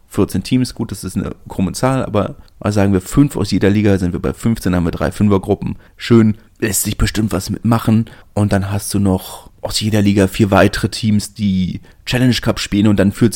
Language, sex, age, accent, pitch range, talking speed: German, male, 30-49, German, 90-105 Hz, 215 wpm